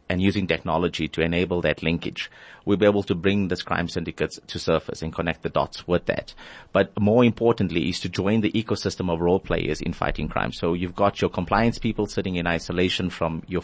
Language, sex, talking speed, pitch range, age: English, male, 210 wpm, 85-95 Hz, 30-49